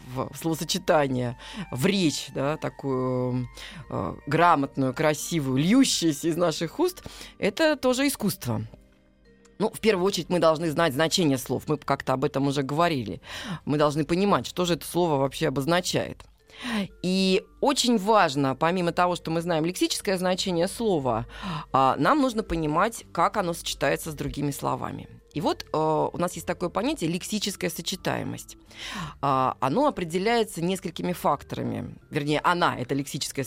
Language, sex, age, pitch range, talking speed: Russian, female, 20-39, 140-195 Hz, 140 wpm